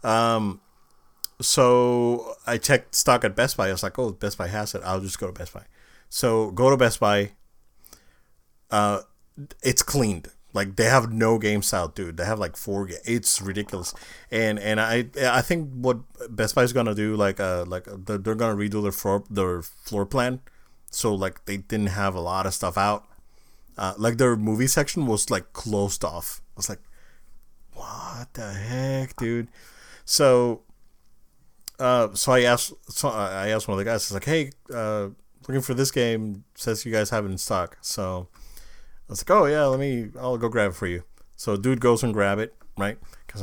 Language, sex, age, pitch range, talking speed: English, male, 30-49, 100-120 Hz, 195 wpm